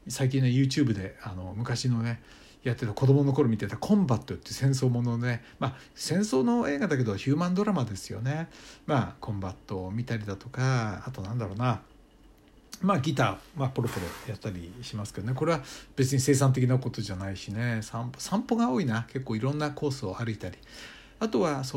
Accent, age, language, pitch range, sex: native, 60-79, Japanese, 110-150 Hz, male